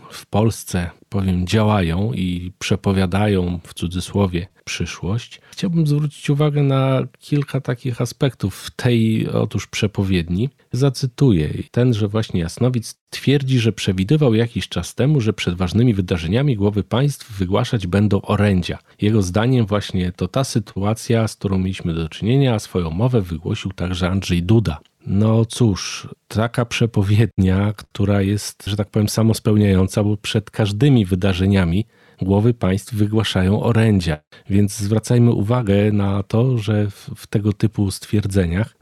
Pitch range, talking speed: 95-120 Hz, 135 wpm